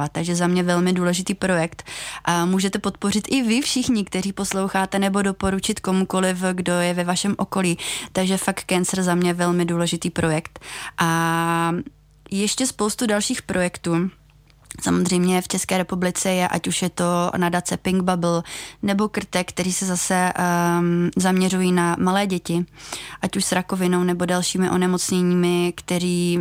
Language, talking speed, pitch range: Czech, 150 wpm, 175-195 Hz